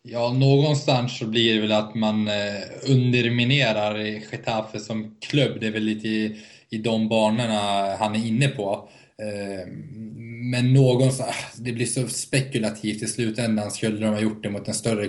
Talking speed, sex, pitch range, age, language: 160 wpm, male, 105-120 Hz, 20-39, Swedish